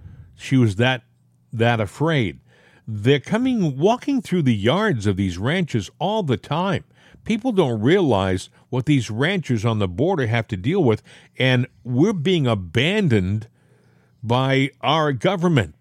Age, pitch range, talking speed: 50-69, 120-165 Hz, 140 wpm